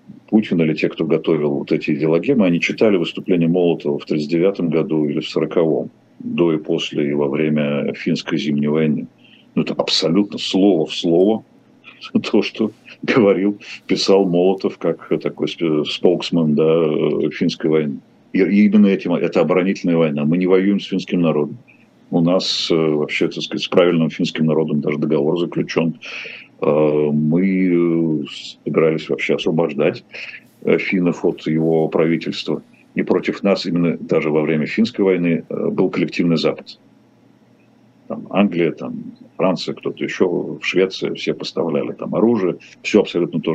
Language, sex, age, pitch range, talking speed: Russian, male, 50-69, 75-95 Hz, 140 wpm